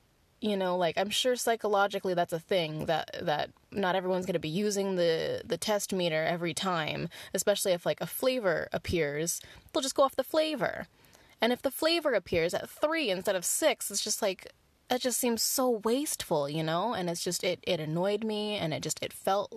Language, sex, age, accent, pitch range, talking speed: English, female, 10-29, American, 165-210 Hz, 205 wpm